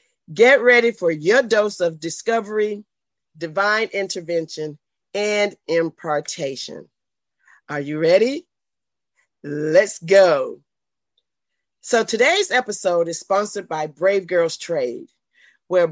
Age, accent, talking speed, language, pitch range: 40-59, American, 100 wpm, English, 170-225 Hz